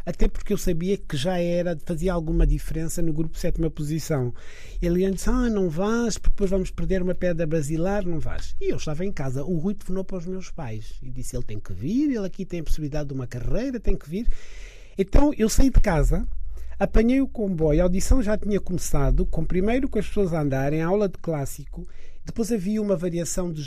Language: Portuguese